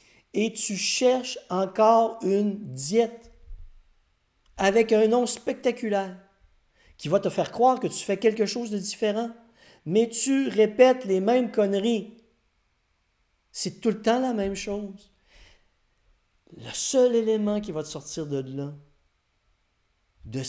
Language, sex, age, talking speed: French, male, 50-69, 130 wpm